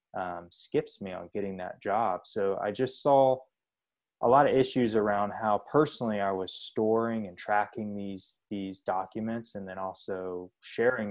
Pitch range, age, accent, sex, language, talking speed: 100-120 Hz, 20-39, American, male, English, 160 wpm